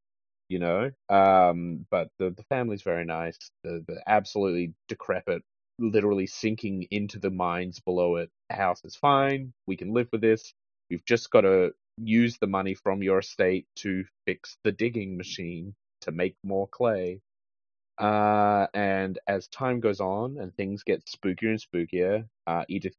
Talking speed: 160 wpm